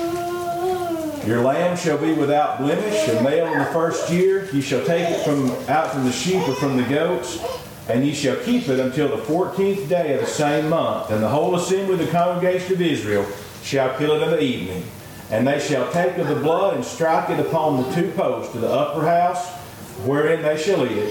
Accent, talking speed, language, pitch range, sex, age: American, 215 wpm, English, 130-175 Hz, male, 40-59